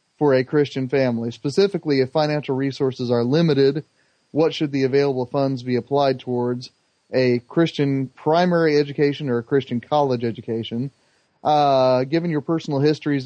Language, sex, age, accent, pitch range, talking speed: English, male, 30-49, American, 130-145 Hz, 145 wpm